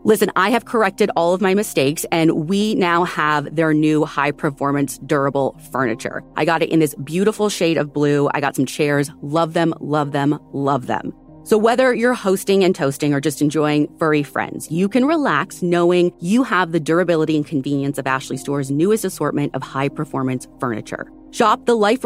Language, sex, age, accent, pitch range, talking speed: English, female, 30-49, American, 145-210 Hz, 185 wpm